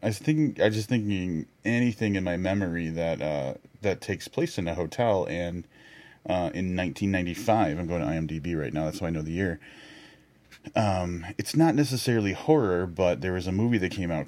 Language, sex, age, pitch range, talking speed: English, male, 30-49, 85-100 Hz, 200 wpm